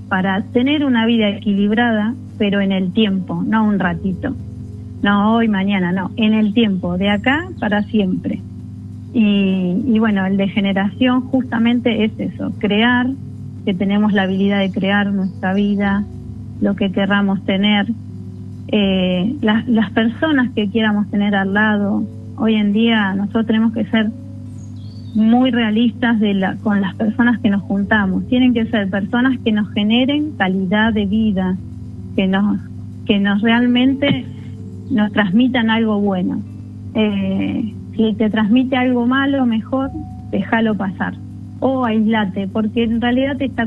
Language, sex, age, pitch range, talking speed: Spanish, female, 30-49, 190-230 Hz, 145 wpm